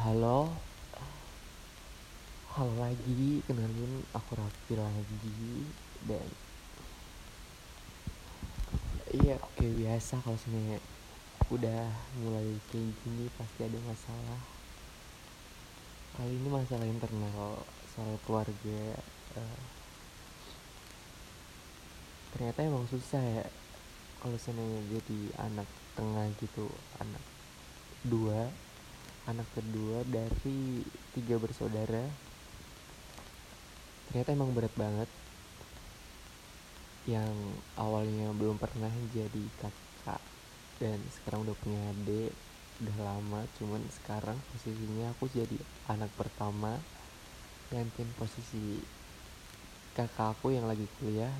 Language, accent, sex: Indonesian, native, male